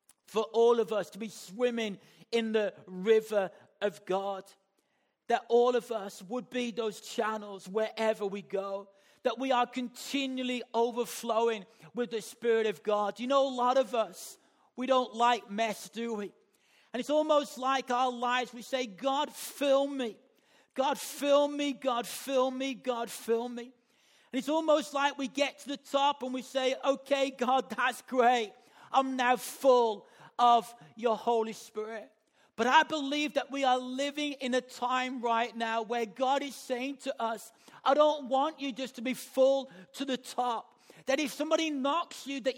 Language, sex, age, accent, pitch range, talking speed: English, male, 40-59, British, 225-270 Hz, 175 wpm